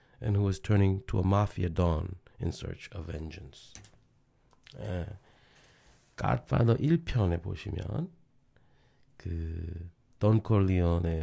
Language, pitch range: Korean, 95-125 Hz